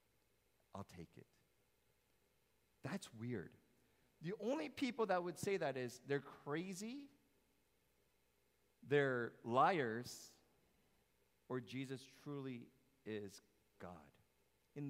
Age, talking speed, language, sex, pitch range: 40-59, 95 wpm, English, male, 110-145 Hz